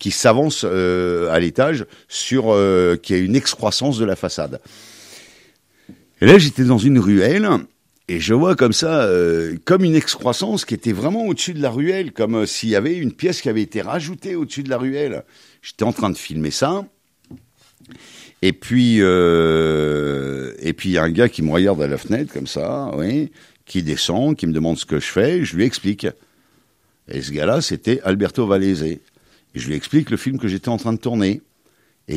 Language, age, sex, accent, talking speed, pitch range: French, 60-79, male, French, 195 wpm, 75-115 Hz